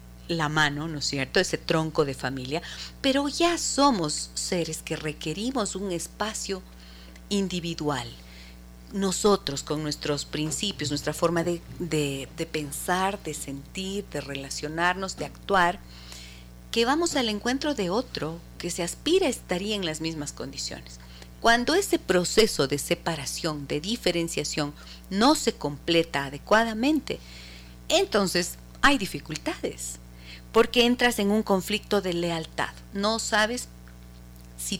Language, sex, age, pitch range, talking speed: Spanish, female, 40-59, 135-205 Hz, 120 wpm